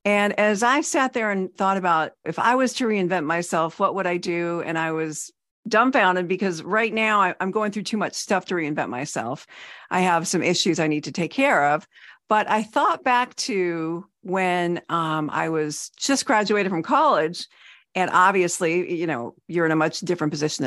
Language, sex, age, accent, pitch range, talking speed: English, female, 50-69, American, 170-225 Hz, 195 wpm